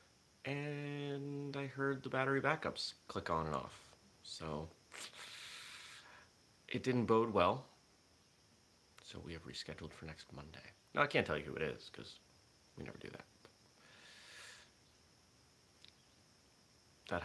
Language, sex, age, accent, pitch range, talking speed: English, male, 30-49, American, 80-110 Hz, 125 wpm